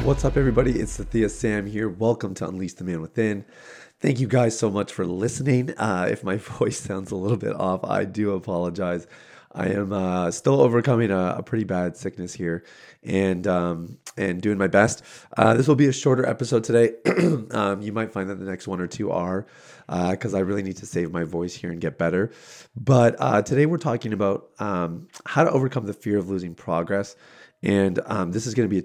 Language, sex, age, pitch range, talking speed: English, male, 30-49, 95-120 Hz, 215 wpm